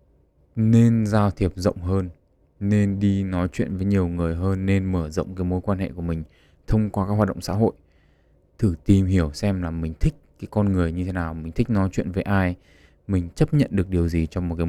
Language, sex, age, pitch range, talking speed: Vietnamese, male, 20-39, 85-100 Hz, 235 wpm